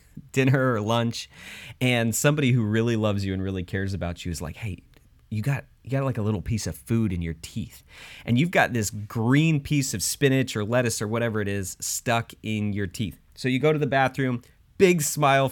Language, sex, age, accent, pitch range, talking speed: English, male, 30-49, American, 110-150 Hz, 215 wpm